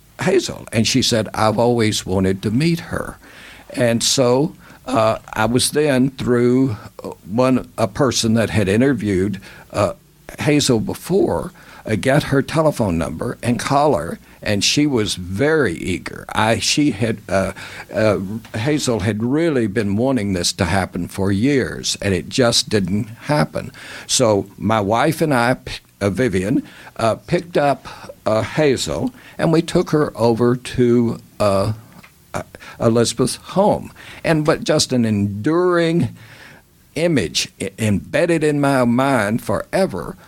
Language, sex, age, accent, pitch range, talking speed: English, male, 60-79, American, 110-145 Hz, 135 wpm